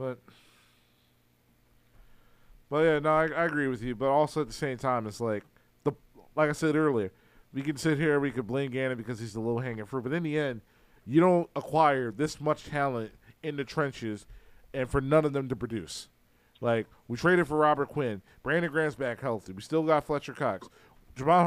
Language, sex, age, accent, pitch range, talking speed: English, male, 40-59, American, 125-155 Hz, 200 wpm